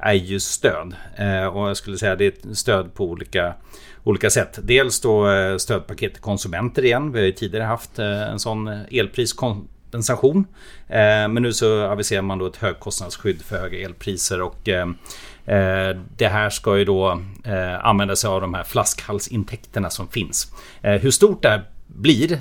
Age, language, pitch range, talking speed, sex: 30-49, Swedish, 100-120 Hz, 150 wpm, male